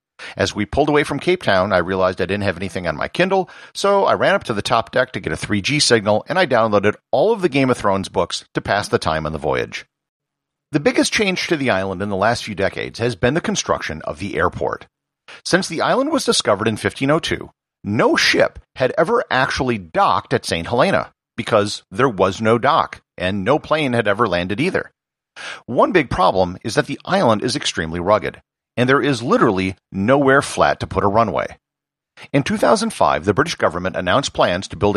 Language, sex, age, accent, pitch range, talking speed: English, male, 50-69, American, 95-165 Hz, 210 wpm